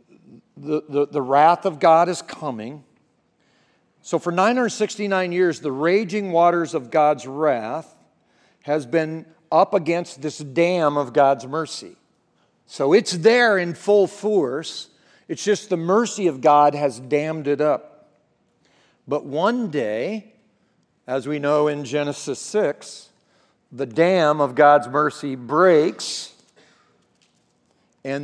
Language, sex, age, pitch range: English, male, 50-69, 140-180 Hz